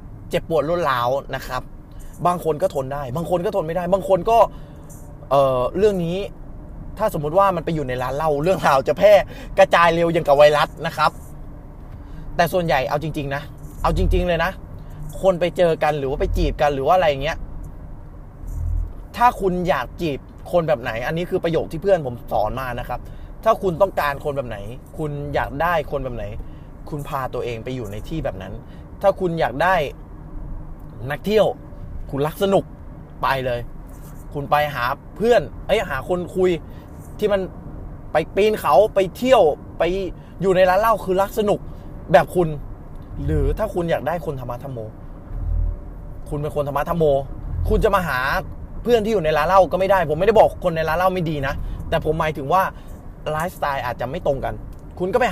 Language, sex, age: Thai, male, 20-39